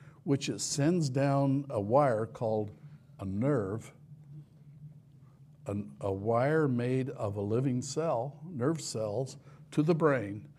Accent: American